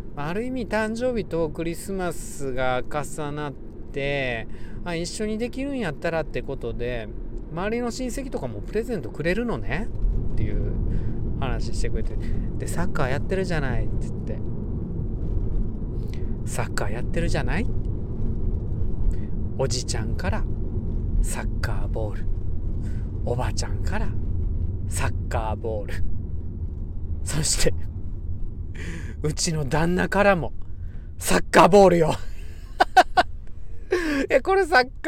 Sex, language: male, Japanese